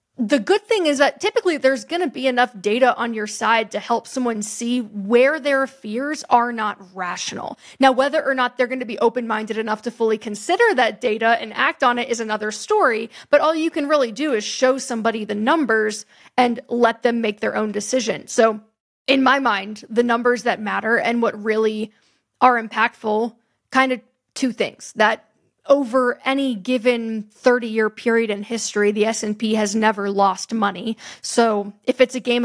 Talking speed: 190 wpm